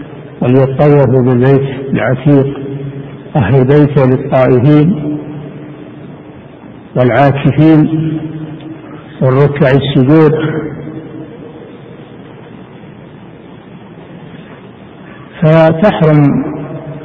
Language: Arabic